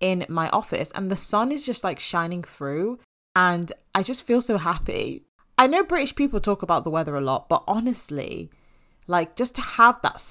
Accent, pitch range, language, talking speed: British, 145-185 Hz, English, 200 wpm